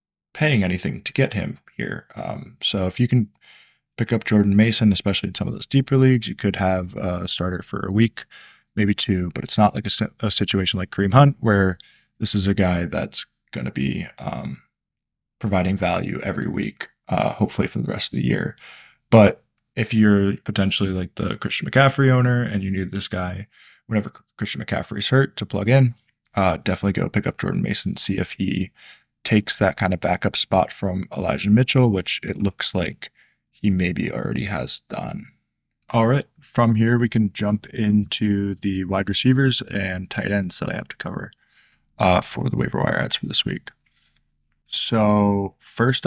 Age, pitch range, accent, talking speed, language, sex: 20-39, 95-115 Hz, American, 185 wpm, English, male